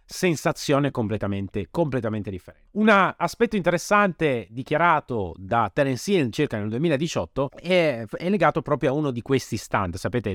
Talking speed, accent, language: 140 wpm, native, Italian